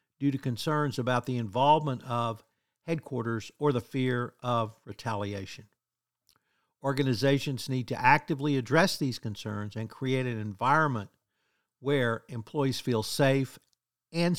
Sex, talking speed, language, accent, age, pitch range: male, 120 wpm, English, American, 50-69, 115-145 Hz